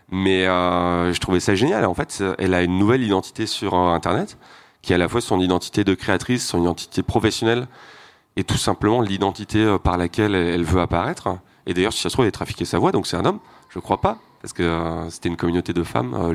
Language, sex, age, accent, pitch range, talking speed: French, male, 30-49, French, 90-110 Hz, 240 wpm